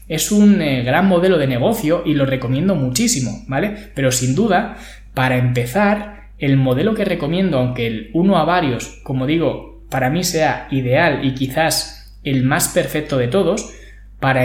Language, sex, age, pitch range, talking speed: Spanish, male, 20-39, 130-180 Hz, 165 wpm